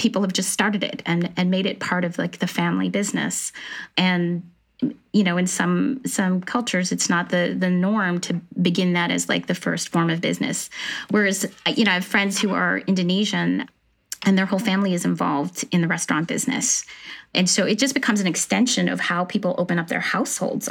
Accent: American